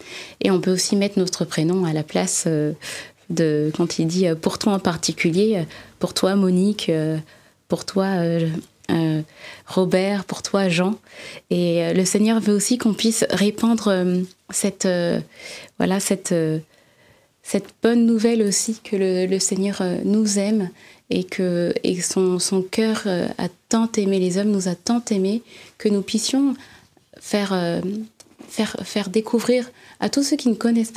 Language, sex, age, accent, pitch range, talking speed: French, female, 20-39, French, 180-215 Hz, 155 wpm